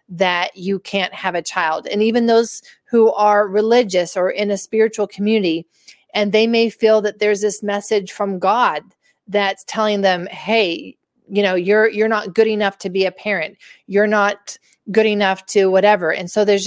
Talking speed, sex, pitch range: 185 wpm, female, 195-220 Hz